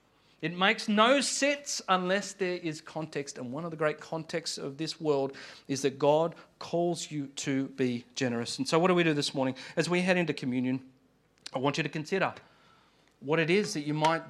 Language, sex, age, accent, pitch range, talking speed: English, male, 40-59, Australian, 140-185 Hz, 205 wpm